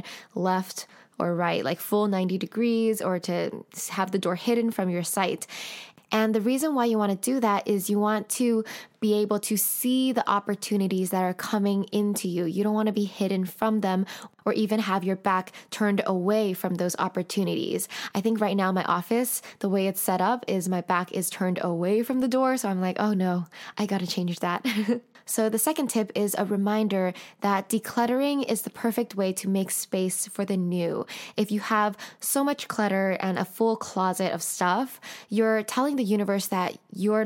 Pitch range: 185-225 Hz